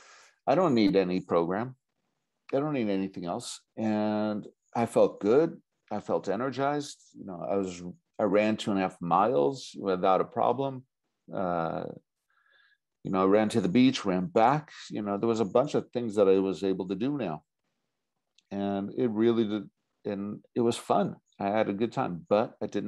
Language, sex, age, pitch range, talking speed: English, male, 50-69, 95-110 Hz, 190 wpm